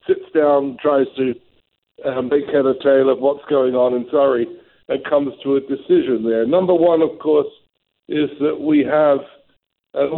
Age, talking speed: 60-79, 175 wpm